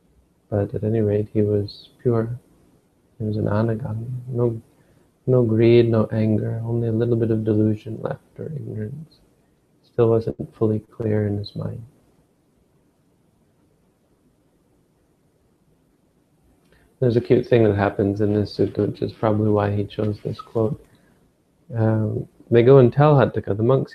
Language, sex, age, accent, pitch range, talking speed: English, male, 40-59, American, 105-125 Hz, 145 wpm